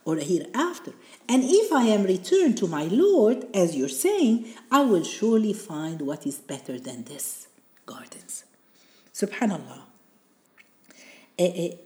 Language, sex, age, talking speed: Arabic, female, 50-69, 135 wpm